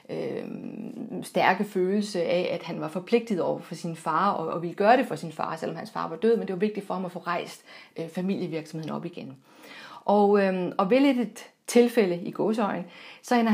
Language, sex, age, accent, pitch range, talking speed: Danish, female, 40-59, native, 180-230 Hz, 215 wpm